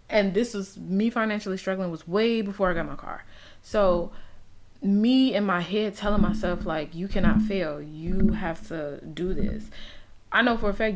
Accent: American